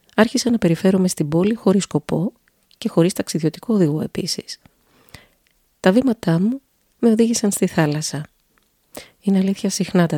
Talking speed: 135 wpm